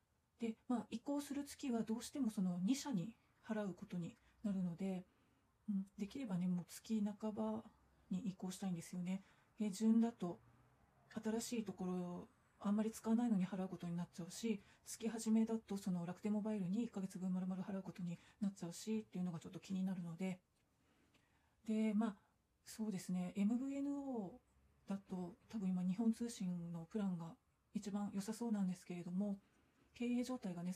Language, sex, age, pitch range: Japanese, female, 40-59, 180-220 Hz